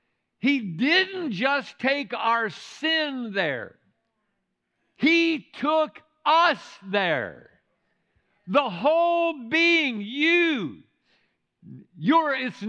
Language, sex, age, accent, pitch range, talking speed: English, male, 60-79, American, 220-315 Hz, 75 wpm